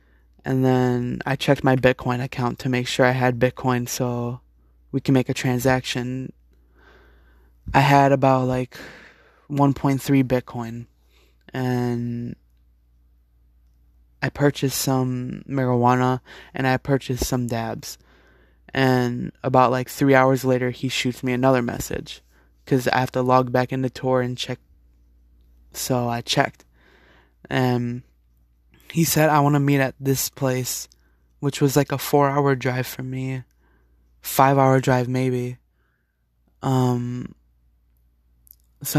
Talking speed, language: 125 wpm, English